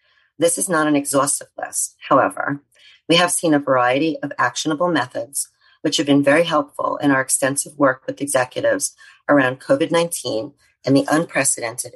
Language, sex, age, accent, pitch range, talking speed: English, female, 40-59, American, 135-170 Hz, 155 wpm